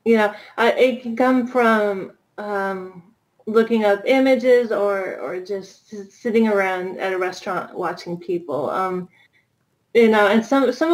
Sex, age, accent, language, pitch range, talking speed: female, 30-49, American, English, 185-225 Hz, 150 wpm